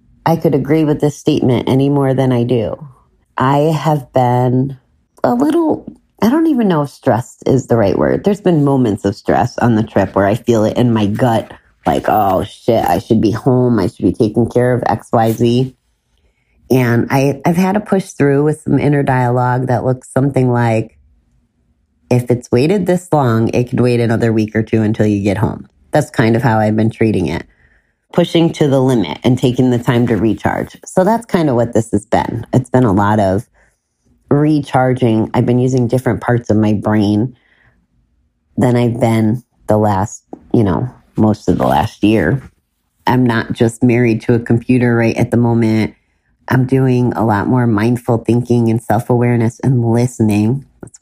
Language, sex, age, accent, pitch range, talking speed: English, female, 30-49, American, 110-130 Hz, 190 wpm